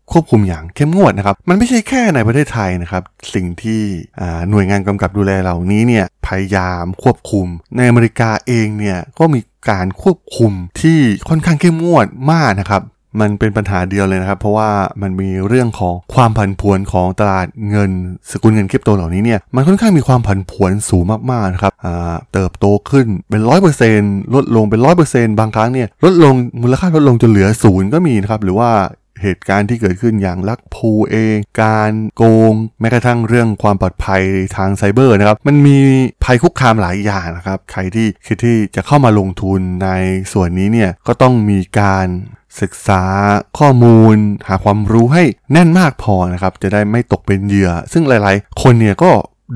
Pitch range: 95-120 Hz